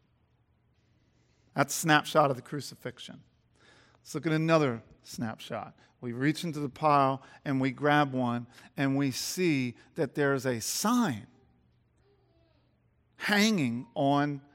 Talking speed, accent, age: 125 wpm, American, 40-59